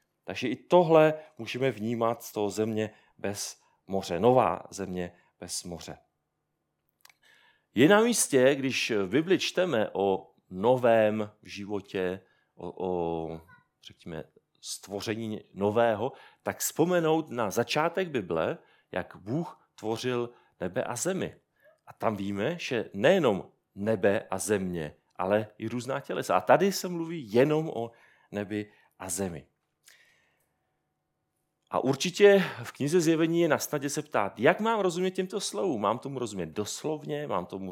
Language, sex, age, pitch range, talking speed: Czech, male, 40-59, 95-150 Hz, 125 wpm